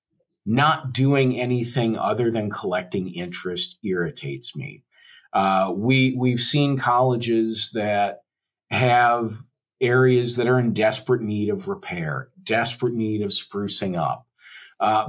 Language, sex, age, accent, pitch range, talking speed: English, male, 50-69, American, 115-145 Hz, 115 wpm